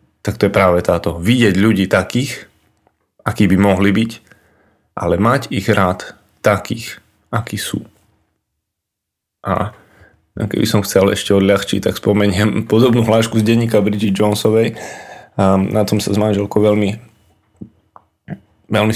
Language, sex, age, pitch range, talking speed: Slovak, male, 20-39, 100-110 Hz, 125 wpm